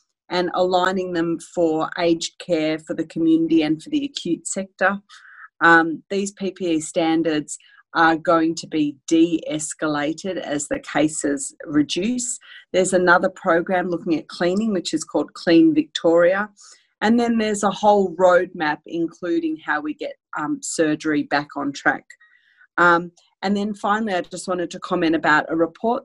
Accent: Australian